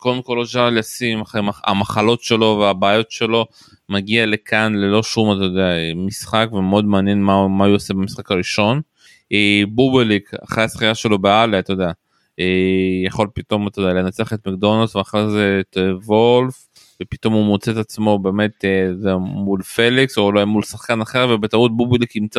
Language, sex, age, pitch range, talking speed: Hebrew, male, 20-39, 100-115 Hz, 155 wpm